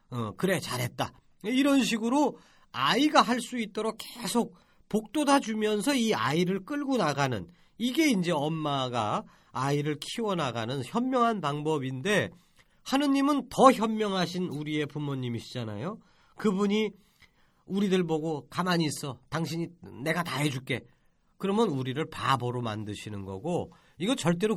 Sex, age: male, 40-59